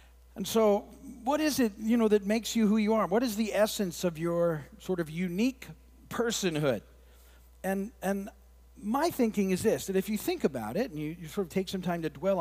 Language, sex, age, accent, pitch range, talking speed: English, male, 50-69, American, 155-215 Hz, 220 wpm